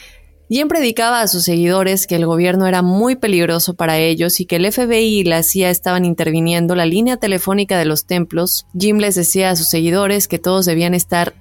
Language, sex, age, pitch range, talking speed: Spanish, female, 20-39, 170-205 Hz, 200 wpm